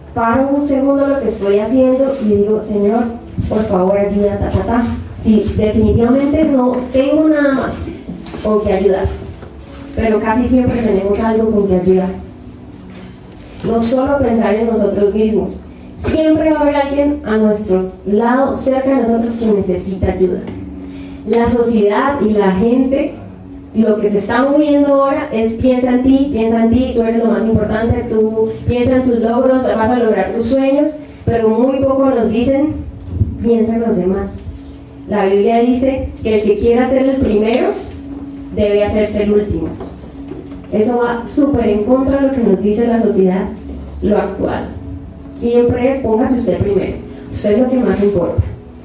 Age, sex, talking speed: 20-39, female, 165 wpm